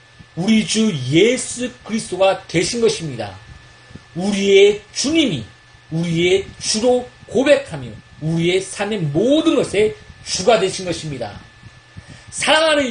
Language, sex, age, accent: Korean, male, 40-59, native